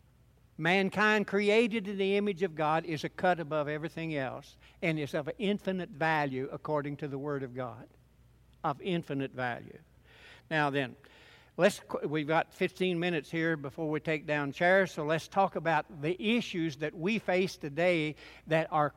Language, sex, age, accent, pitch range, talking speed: English, male, 60-79, American, 150-185 Hz, 165 wpm